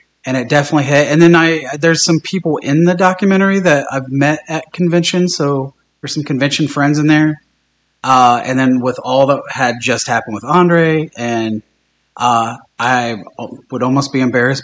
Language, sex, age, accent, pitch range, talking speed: English, male, 30-49, American, 120-150 Hz, 175 wpm